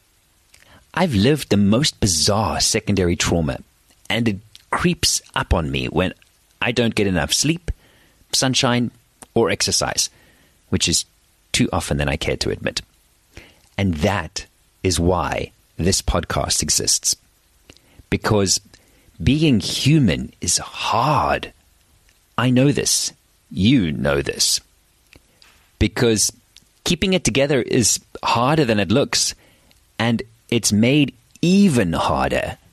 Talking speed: 115 wpm